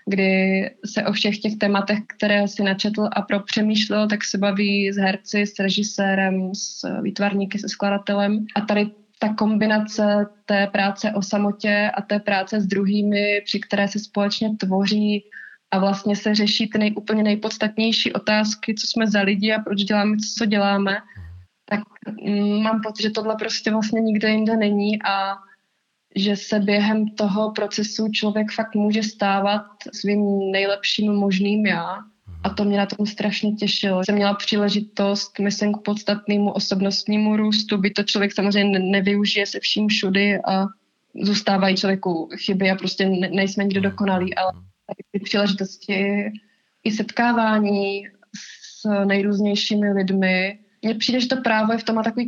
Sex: female